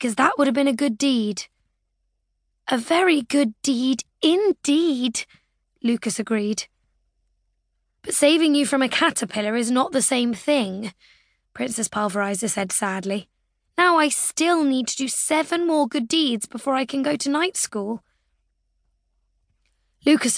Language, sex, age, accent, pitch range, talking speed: English, female, 20-39, British, 205-275 Hz, 140 wpm